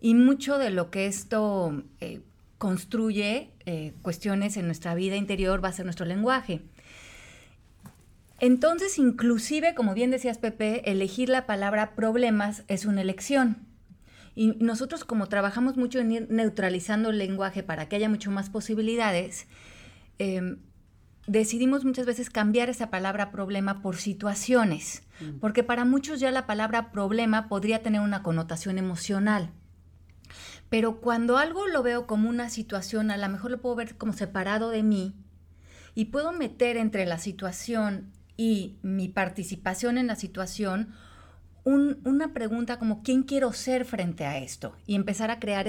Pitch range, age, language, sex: 185-235 Hz, 30-49, Spanish, female